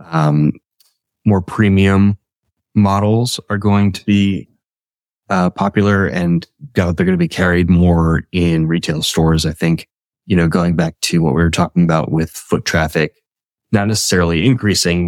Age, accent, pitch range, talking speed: 20-39, American, 80-100 Hz, 155 wpm